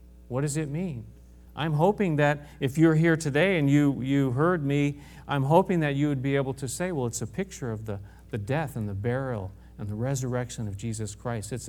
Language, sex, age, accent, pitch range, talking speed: English, male, 40-59, American, 110-165 Hz, 220 wpm